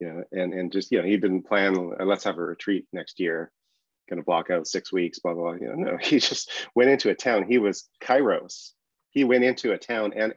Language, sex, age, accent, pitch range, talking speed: English, male, 30-49, American, 85-100 Hz, 245 wpm